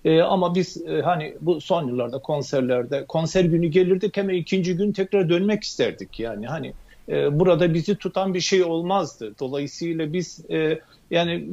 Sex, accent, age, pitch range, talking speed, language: male, native, 50-69, 150-195 Hz, 160 wpm, Turkish